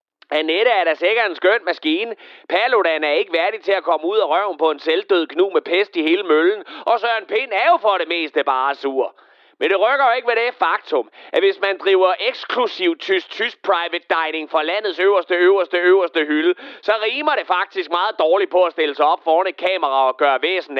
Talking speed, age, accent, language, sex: 220 wpm, 30-49, native, Danish, male